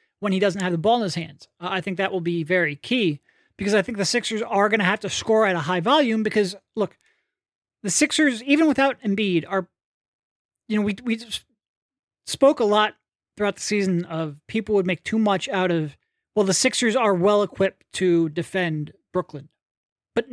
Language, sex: English, male